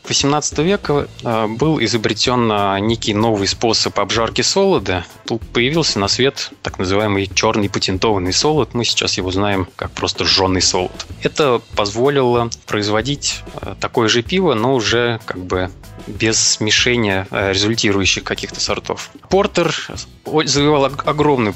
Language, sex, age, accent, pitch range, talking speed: Russian, male, 20-39, native, 95-115 Hz, 125 wpm